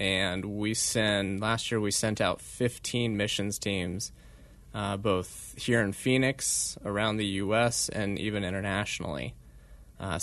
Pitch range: 95-110 Hz